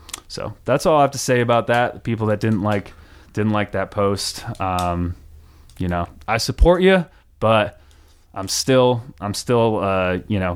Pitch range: 90-110 Hz